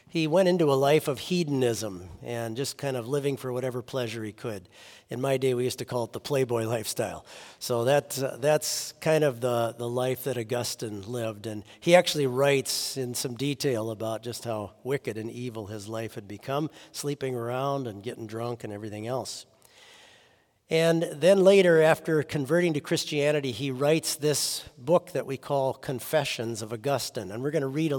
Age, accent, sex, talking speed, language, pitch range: 50-69, American, male, 190 wpm, English, 120-155 Hz